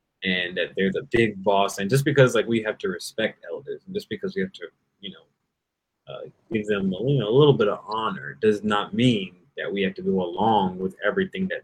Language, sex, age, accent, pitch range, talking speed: English, male, 30-49, American, 100-140 Hz, 235 wpm